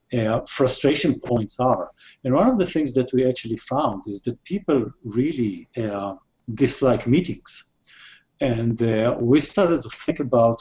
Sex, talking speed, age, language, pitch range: male, 155 wpm, 50-69, English, 115-140 Hz